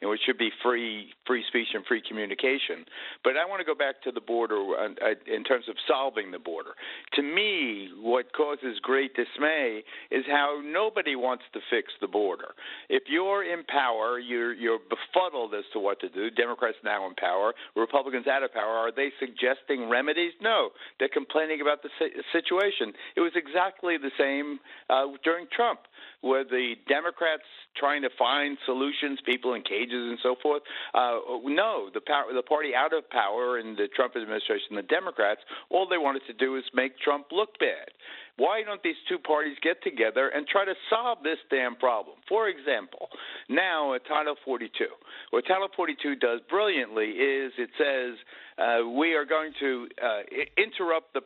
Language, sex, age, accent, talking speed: English, male, 50-69, American, 175 wpm